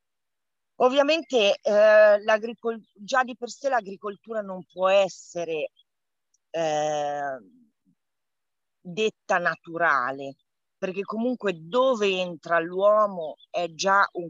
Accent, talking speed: native, 90 wpm